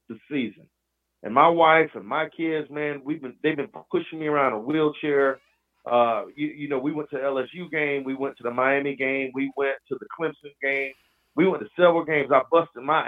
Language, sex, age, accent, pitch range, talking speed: English, male, 40-59, American, 130-175 Hz, 215 wpm